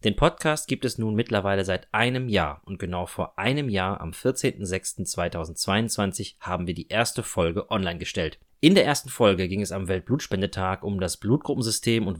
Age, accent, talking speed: 30-49, German, 170 wpm